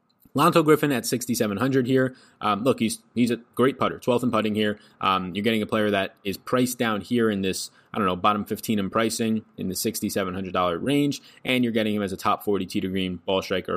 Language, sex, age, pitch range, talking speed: English, male, 20-39, 95-125 Hz, 225 wpm